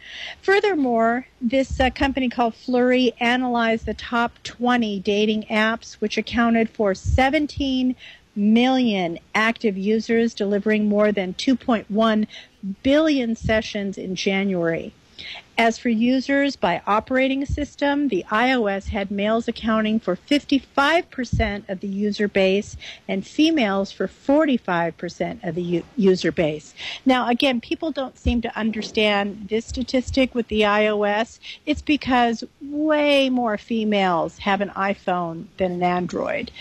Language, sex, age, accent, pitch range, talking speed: English, female, 50-69, American, 195-250 Hz, 125 wpm